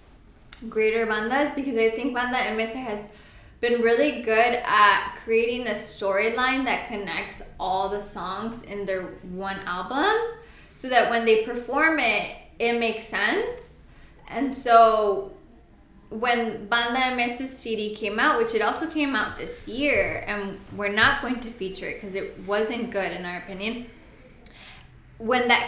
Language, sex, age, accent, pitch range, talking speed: English, female, 10-29, American, 205-240 Hz, 150 wpm